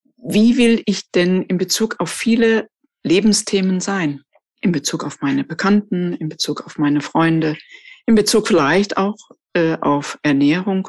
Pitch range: 170-220 Hz